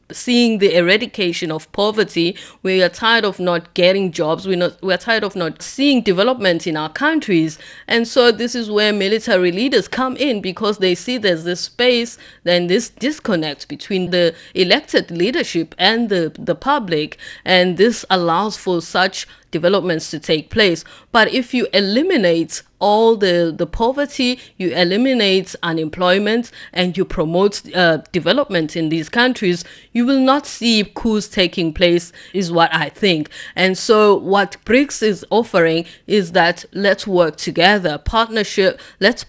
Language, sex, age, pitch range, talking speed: English, female, 30-49, 175-225 Hz, 155 wpm